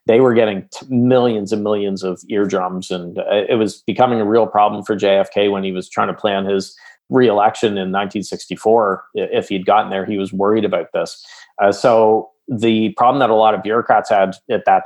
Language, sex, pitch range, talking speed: English, male, 95-110 Hz, 195 wpm